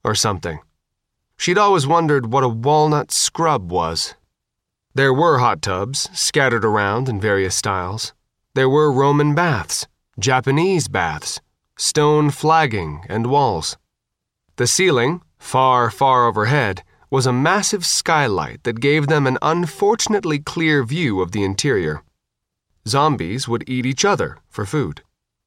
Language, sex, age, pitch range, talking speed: English, male, 30-49, 110-150 Hz, 130 wpm